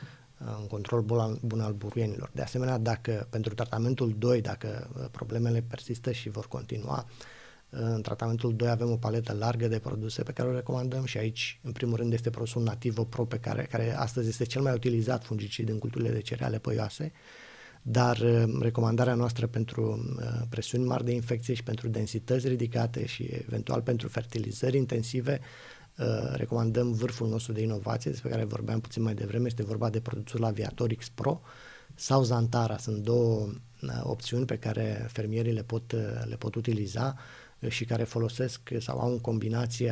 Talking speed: 160 wpm